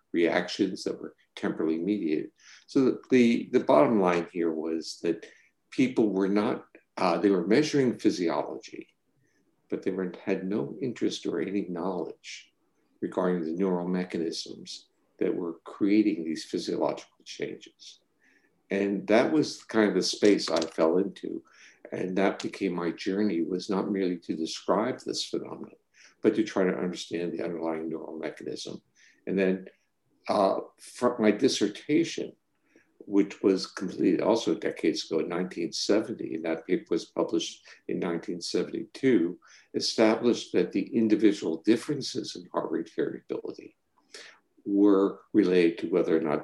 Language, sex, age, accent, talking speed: English, male, 60-79, American, 140 wpm